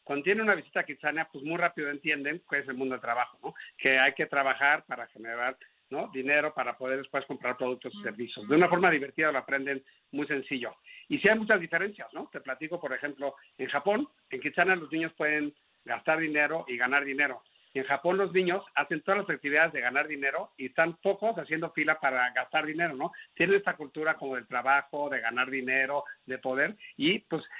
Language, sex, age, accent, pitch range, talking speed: Spanish, male, 50-69, Mexican, 135-160 Hz, 205 wpm